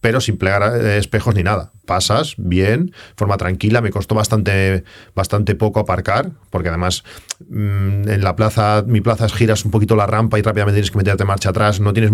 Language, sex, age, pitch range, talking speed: Spanish, male, 40-59, 95-110 Hz, 195 wpm